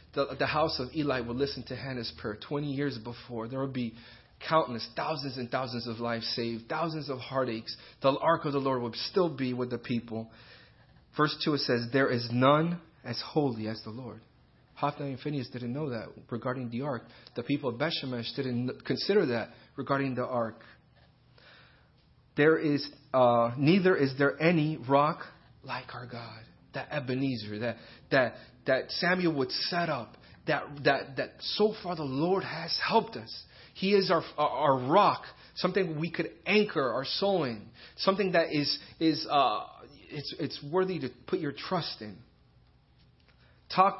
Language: English